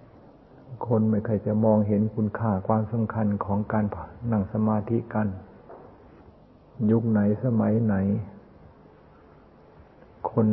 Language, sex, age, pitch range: Thai, male, 60-79, 105-115 Hz